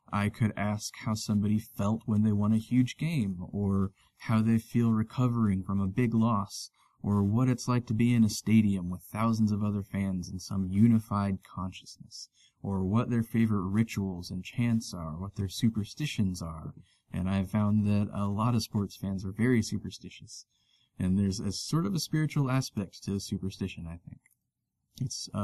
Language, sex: English, male